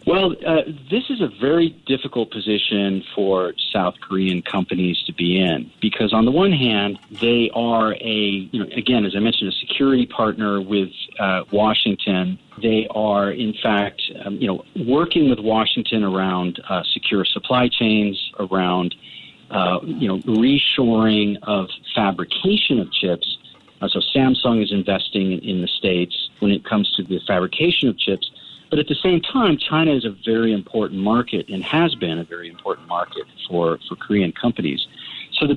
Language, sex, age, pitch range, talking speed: English, male, 50-69, 100-130 Hz, 165 wpm